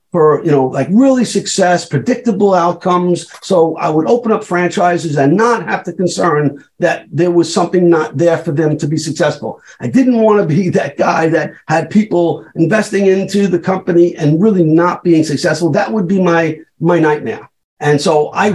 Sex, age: male, 50-69